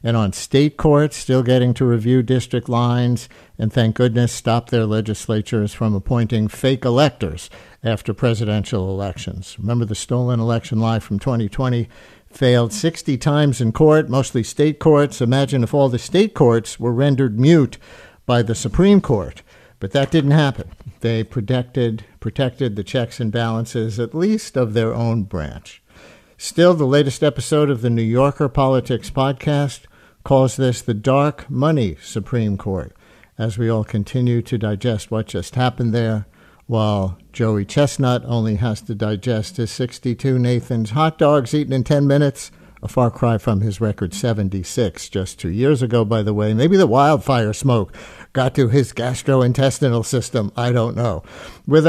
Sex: male